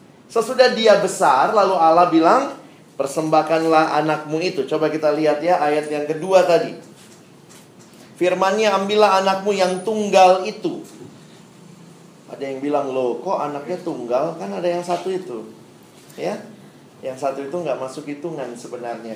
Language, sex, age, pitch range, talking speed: Indonesian, male, 30-49, 145-195 Hz, 135 wpm